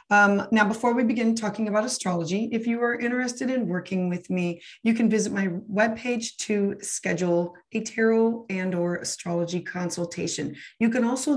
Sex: female